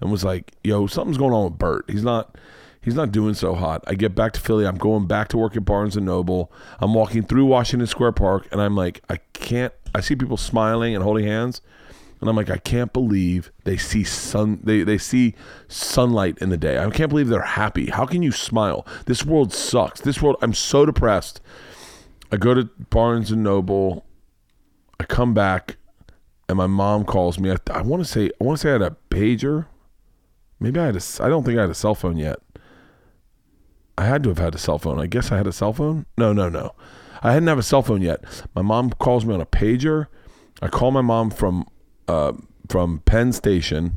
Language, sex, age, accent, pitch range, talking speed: English, male, 30-49, American, 90-120 Hz, 220 wpm